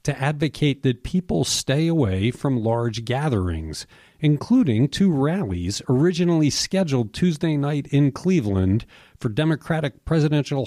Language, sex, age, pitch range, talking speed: English, male, 40-59, 110-150 Hz, 120 wpm